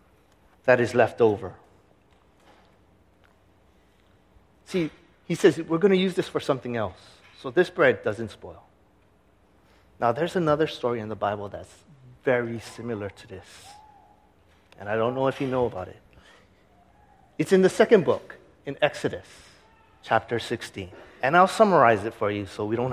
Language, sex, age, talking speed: English, male, 30-49, 155 wpm